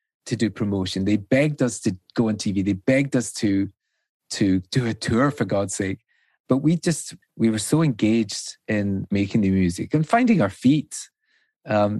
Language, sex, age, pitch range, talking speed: English, male, 30-49, 105-140 Hz, 190 wpm